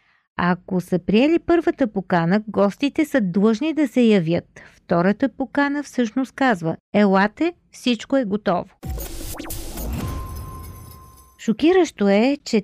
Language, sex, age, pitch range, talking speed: Bulgarian, female, 40-59, 205-270 Hz, 115 wpm